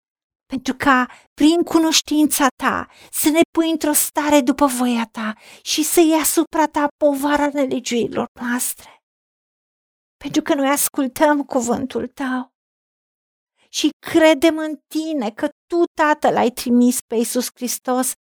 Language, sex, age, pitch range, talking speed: Romanian, female, 50-69, 240-275 Hz, 125 wpm